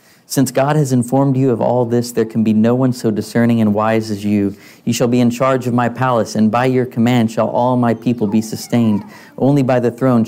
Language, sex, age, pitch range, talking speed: English, male, 30-49, 110-125 Hz, 240 wpm